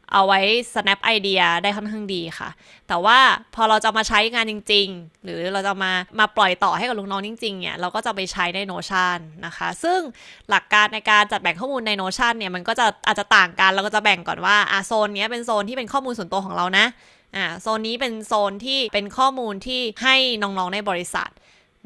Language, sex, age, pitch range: Thai, female, 20-39, 190-230 Hz